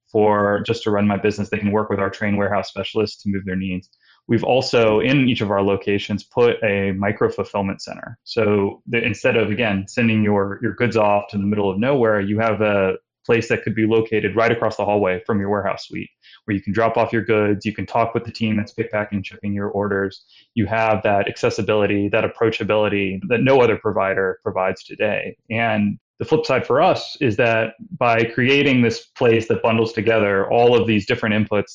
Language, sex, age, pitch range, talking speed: English, male, 20-39, 100-115 Hz, 210 wpm